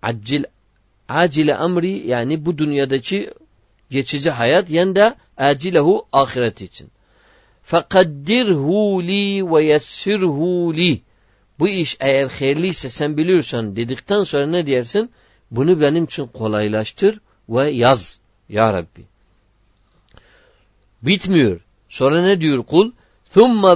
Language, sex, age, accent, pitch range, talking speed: Turkish, male, 50-69, native, 105-165 Hz, 105 wpm